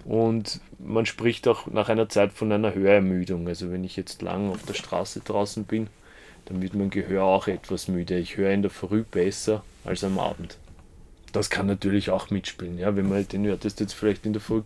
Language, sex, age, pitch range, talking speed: German, male, 20-39, 100-125 Hz, 210 wpm